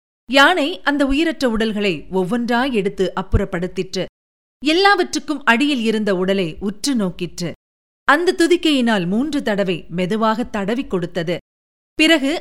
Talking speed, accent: 95 wpm, native